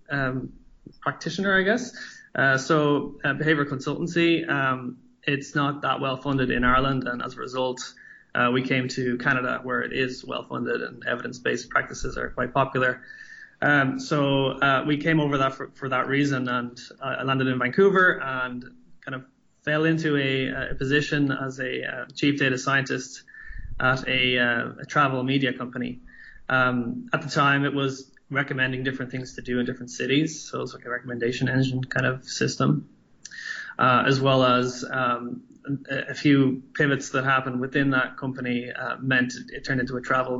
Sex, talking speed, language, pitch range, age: male, 170 wpm, English, 125-140 Hz, 20-39